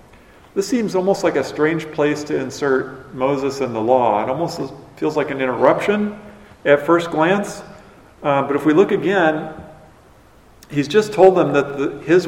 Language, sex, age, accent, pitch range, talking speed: English, male, 50-69, American, 135-175 Hz, 165 wpm